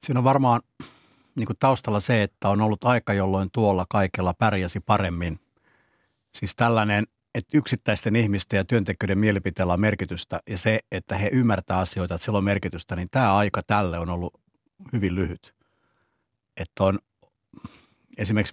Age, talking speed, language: 60-79, 140 wpm, Finnish